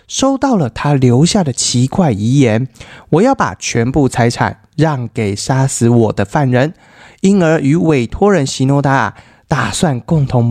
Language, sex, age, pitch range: Chinese, male, 20-39, 115-190 Hz